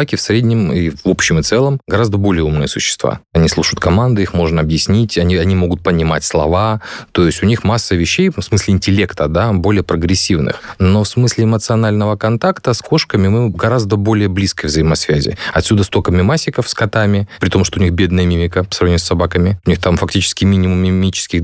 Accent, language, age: native, Russian, 20-39